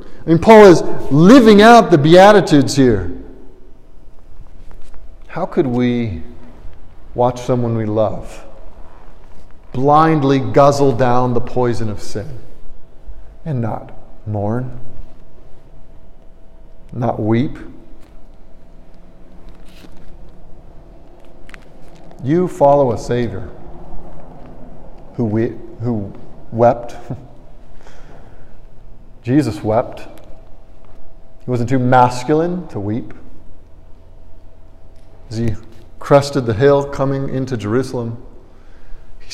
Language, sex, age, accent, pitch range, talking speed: English, male, 50-69, American, 110-160 Hz, 80 wpm